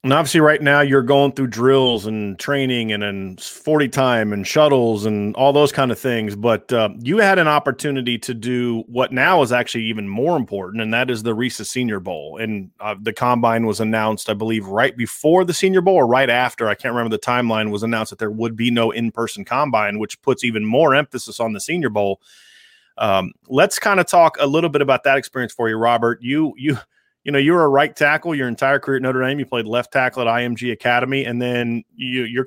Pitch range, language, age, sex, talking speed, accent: 115-140 Hz, English, 30-49, male, 225 wpm, American